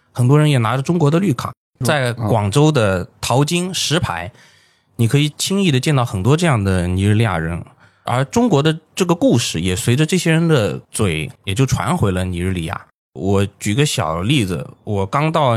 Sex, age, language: male, 20-39, Chinese